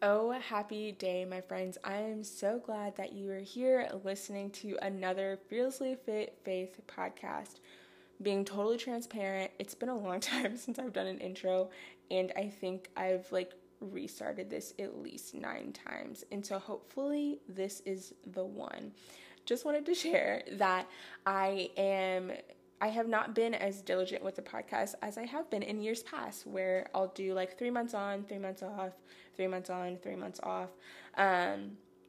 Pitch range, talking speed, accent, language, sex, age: 190-225 Hz, 170 wpm, American, English, female, 20-39